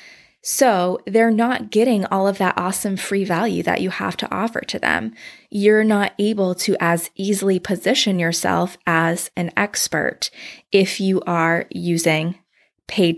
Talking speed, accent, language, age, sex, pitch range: 150 wpm, American, English, 20-39, female, 175-210 Hz